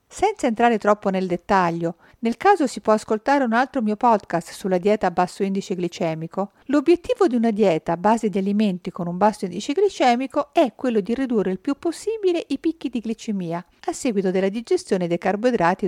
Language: Italian